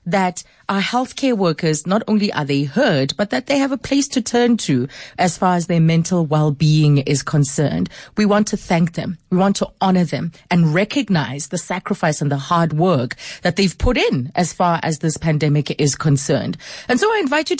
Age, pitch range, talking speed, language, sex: 30-49, 155-215 Hz, 205 wpm, English, female